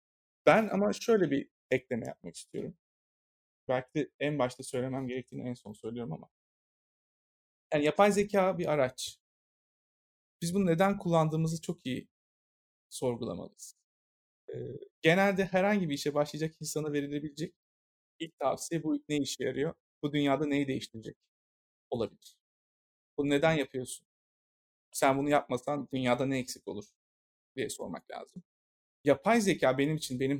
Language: Turkish